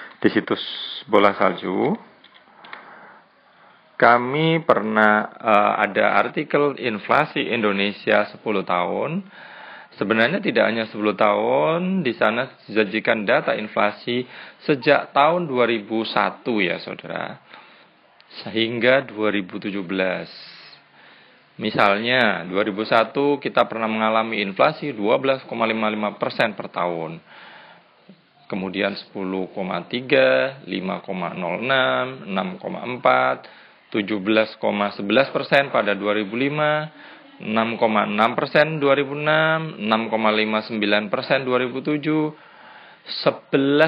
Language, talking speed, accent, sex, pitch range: Indonesian, 70 wpm, native, male, 105-150 Hz